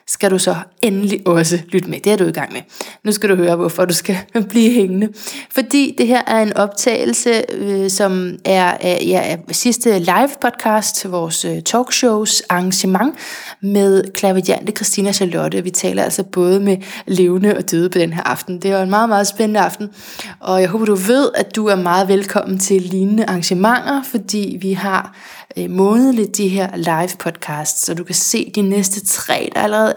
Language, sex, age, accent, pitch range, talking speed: Danish, female, 20-39, native, 190-230 Hz, 180 wpm